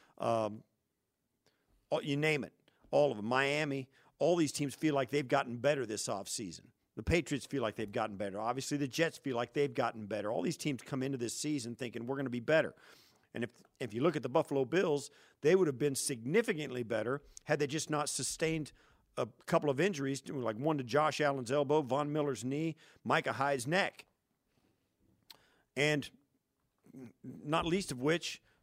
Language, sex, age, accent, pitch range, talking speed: English, male, 50-69, American, 135-160 Hz, 180 wpm